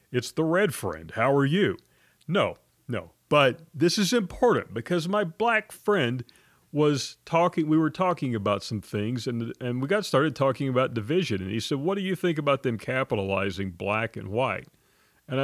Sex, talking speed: male, 185 wpm